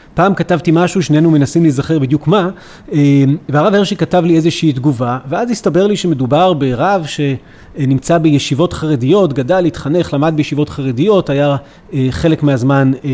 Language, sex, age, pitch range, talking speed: Hebrew, male, 30-49, 145-185 Hz, 135 wpm